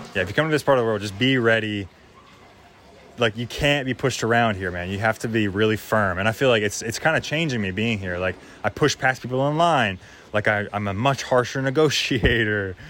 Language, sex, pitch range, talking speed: English, male, 95-125 Hz, 245 wpm